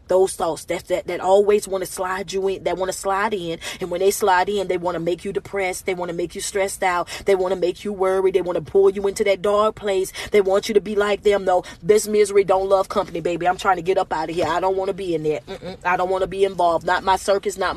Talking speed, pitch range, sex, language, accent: 305 wpm, 185-220 Hz, female, English, American